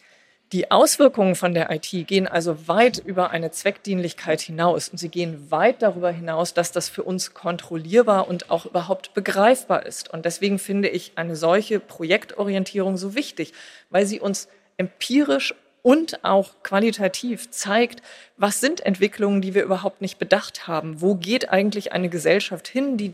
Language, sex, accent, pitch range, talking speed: German, female, German, 170-210 Hz, 160 wpm